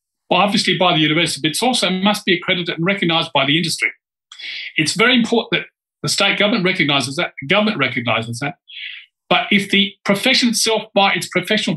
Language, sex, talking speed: English, male, 190 wpm